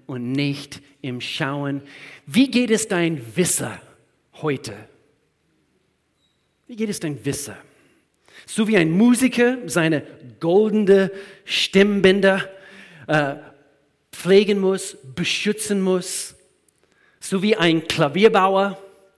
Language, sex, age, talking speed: German, male, 40-59, 95 wpm